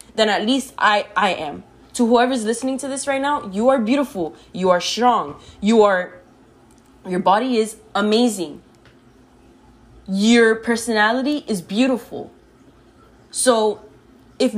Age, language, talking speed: 20-39, English, 130 wpm